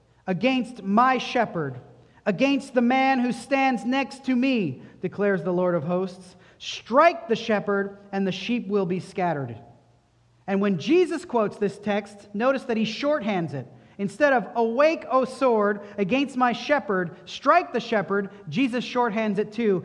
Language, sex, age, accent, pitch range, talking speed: English, male, 40-59, American, 175-250 Hz, 155 wpm